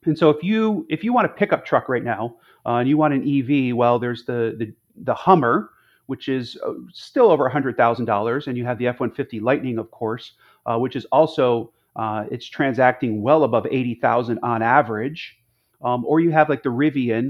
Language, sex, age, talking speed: English, male, 30-49, 195 wpm